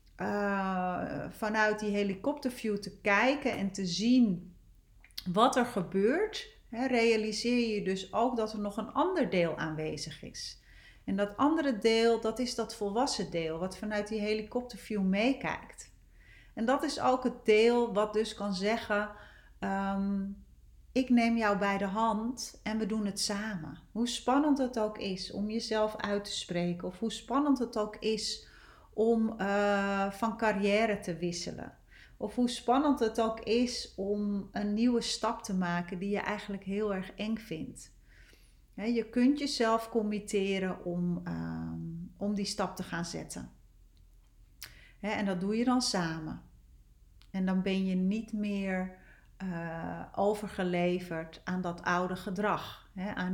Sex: female